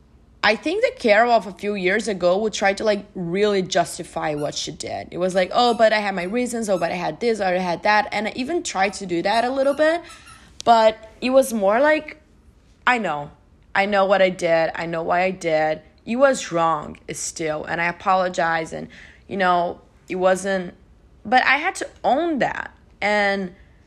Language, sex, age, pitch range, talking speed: English, female, 20-39, 175-245 Hz, 205 wpm